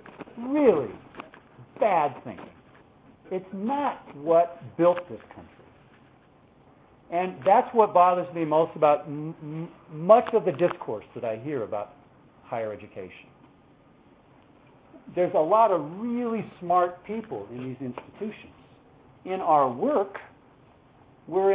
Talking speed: 110 wpm